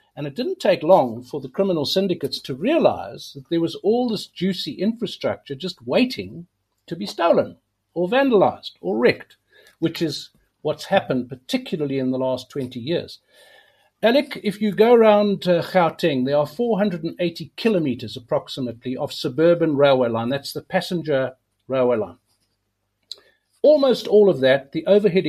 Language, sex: English, male